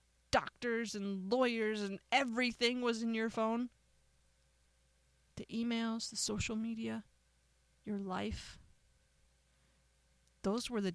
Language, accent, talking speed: English, American, 105 wpm